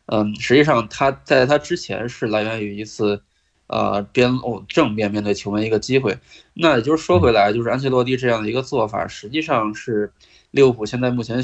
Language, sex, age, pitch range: Chinese, male, 20-39, 105-130 Hz